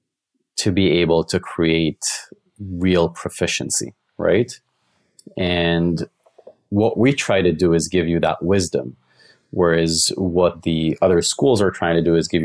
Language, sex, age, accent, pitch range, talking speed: English, male, 30-49, Canadian, 80-95 Hz, 145 wpm